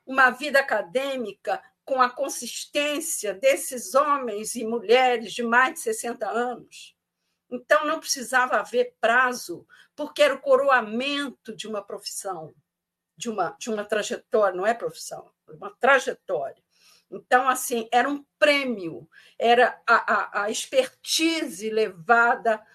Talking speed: 125 wpm